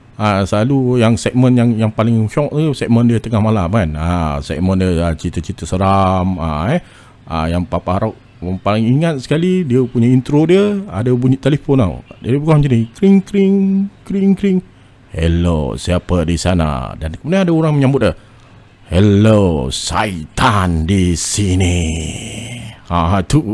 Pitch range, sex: 90-125 Hz, male